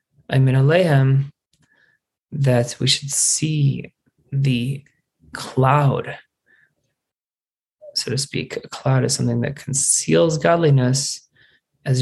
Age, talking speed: 20-39, 85 wpm